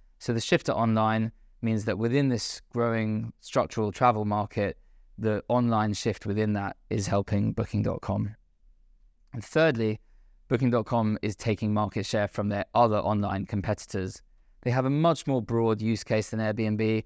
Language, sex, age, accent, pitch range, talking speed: English, male, 20-39, British, 105-115 Hz, 150 wpm